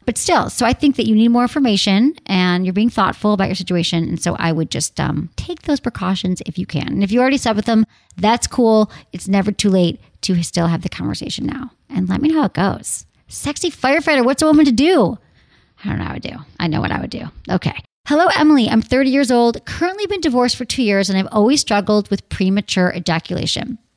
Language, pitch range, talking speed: English, 190-265 Hz, 235 wpm